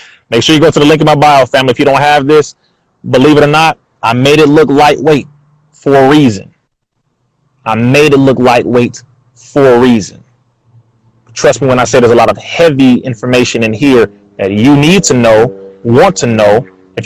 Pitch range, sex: 120-145 Hz, male